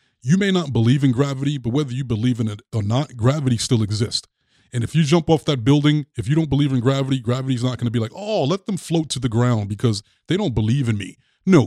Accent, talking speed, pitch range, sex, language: American, 260 wpm, 120-165 Hz, male, English